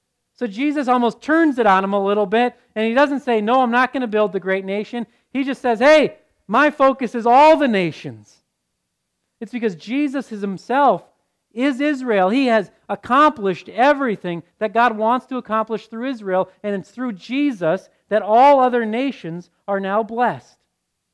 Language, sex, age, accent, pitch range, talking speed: English, male, 40-59, American, 175-240 Hz, 175 wpm